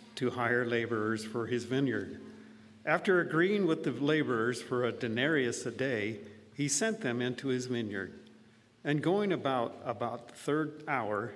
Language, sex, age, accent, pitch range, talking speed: English, male, 50-69, American, 120-160 Hz, 155 wpm